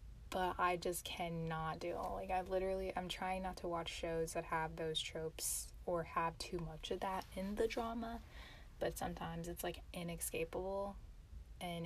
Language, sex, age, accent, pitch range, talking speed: English, female, 10-29, American, 160-185 Hz, 175 wpm